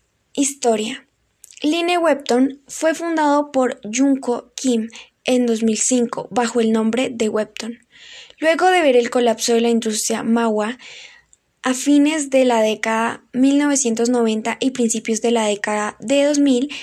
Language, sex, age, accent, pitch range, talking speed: Spanish, female, 10-29, Colombian, 225-265 Hz, 130 wpm